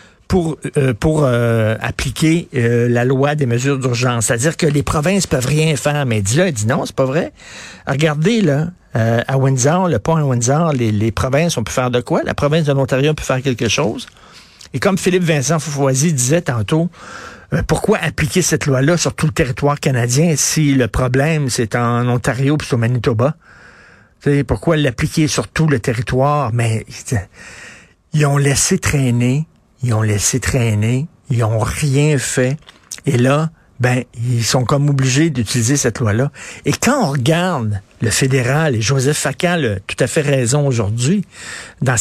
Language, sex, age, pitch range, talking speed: French, male, 60-79, 120-155 Hz, 180 wpm